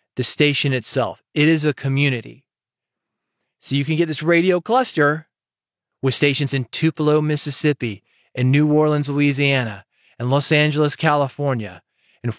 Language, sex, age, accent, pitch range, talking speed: English, male, 30-49, American, 130-160 Hz, 135 wpm